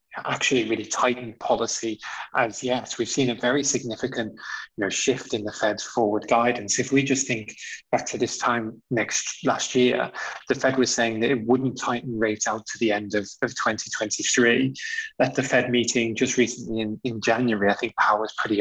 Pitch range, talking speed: 110-125 Hz, 195 wpm